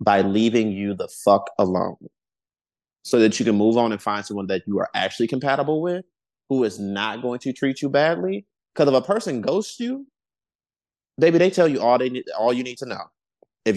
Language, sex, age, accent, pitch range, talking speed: English, male, 30-49, American, 105-155 Hz, 210 wpm